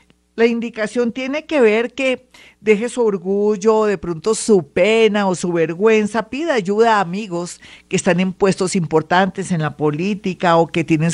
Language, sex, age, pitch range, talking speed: Spanish, female, 50-69, 170-225 Hz, 165 wpm